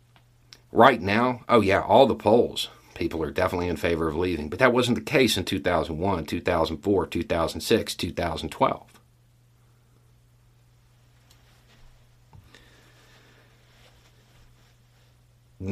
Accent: American